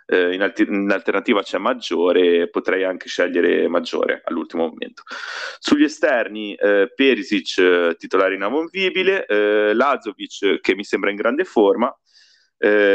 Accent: native